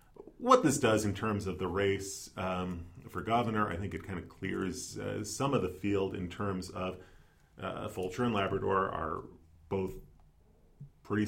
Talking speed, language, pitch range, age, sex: 170 wpm, English, 85-110 Hz, 40-59, male